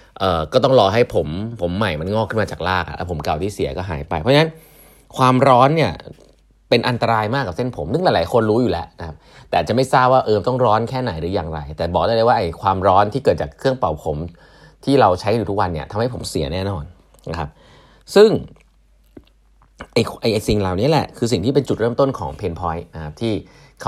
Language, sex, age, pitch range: English, male, 30-49, 85-130 Hz